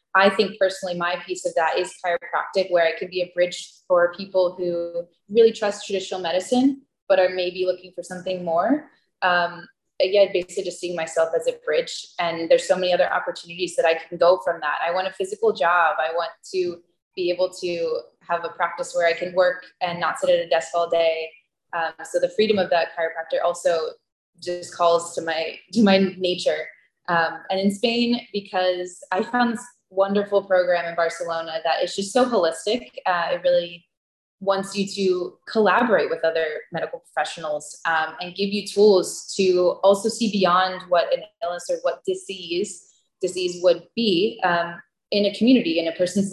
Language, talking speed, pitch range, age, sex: English, 185 wpm, 170-200 Hz, 20-39, female